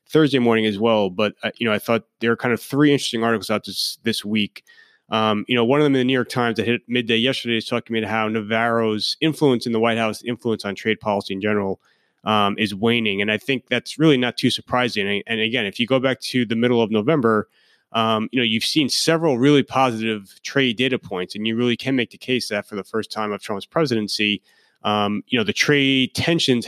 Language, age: English, 30-49